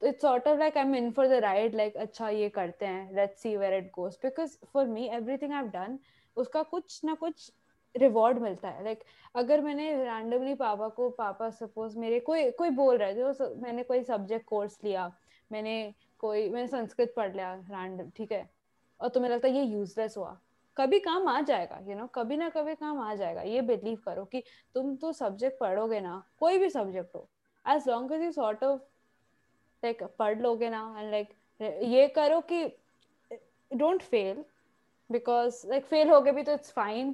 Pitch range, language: 215-275 Hz, Hindi